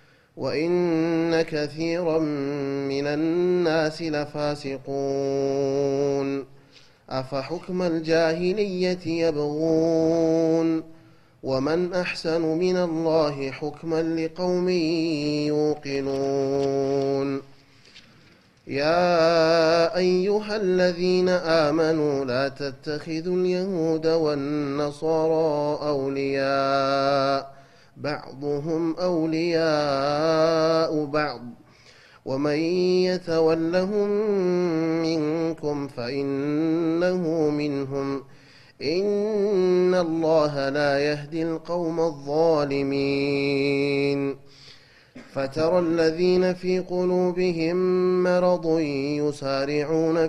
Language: Amharic